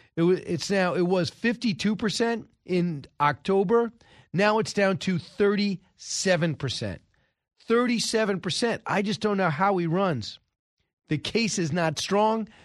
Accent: American